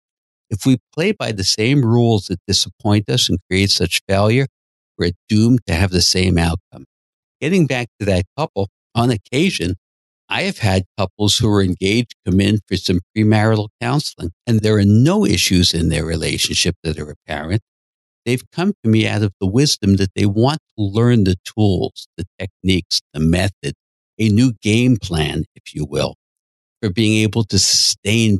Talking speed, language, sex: 175 wpm, English, male